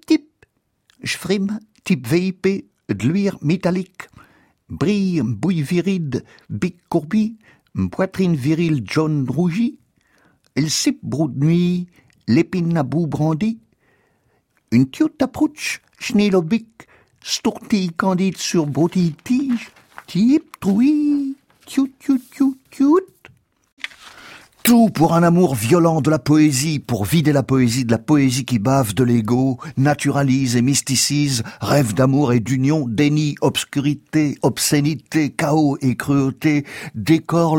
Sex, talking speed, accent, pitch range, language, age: male, 95 wpm, French, 135-175 Hz, French, 60-79